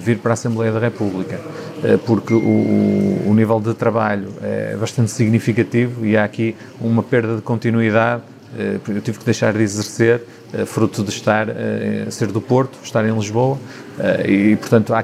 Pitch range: 110-125 Hz